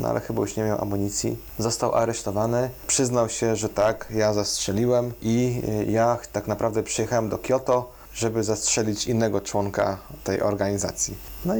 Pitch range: 100-130 Hz